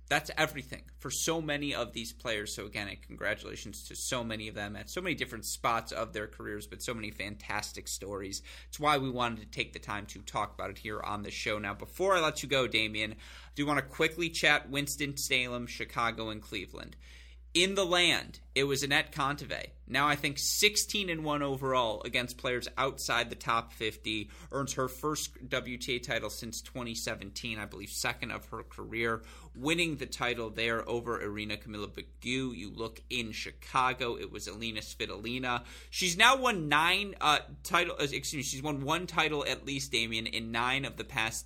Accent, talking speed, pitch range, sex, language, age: American, 190 wpm, 110-145 Hz, male, English, 30-49